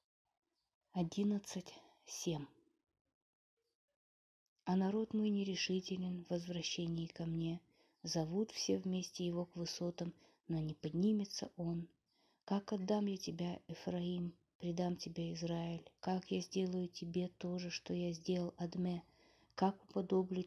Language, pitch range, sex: Russian, 170-190 Hz, female